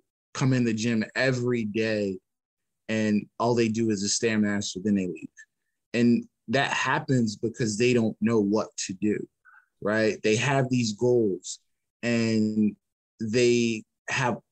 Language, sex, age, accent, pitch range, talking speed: English, male, 20-39, American, 110-130 Hz, 145 wpm